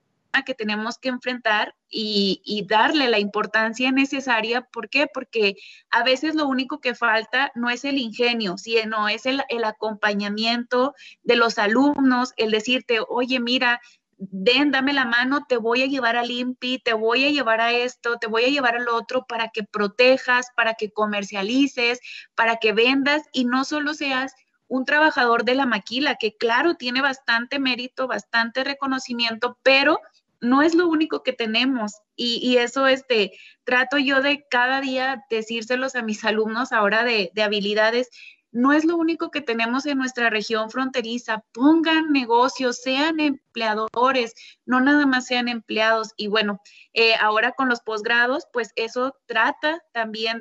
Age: 20-39